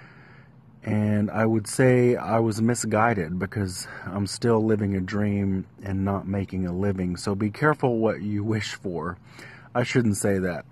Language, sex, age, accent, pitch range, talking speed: English, male, 40-59, American, 100-125 Hz, 160 wpm